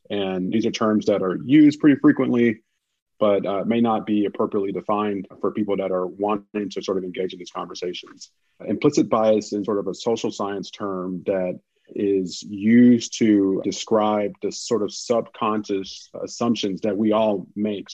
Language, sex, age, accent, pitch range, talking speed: English, male, 30-49, American, 95-110 Hz, 170 wpm